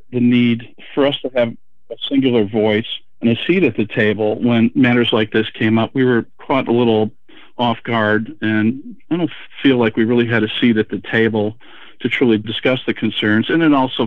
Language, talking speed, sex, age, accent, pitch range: English, 210 wpm, male, 50-69, American, 105-120 Hz